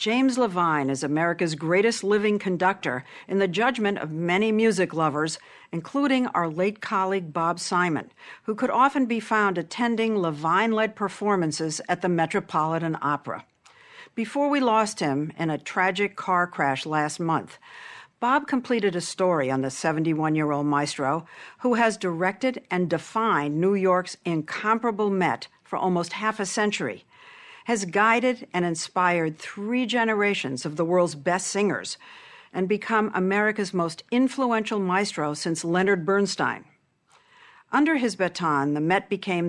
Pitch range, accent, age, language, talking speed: 165-220 Hz, American, 60-79, English, 140 wpm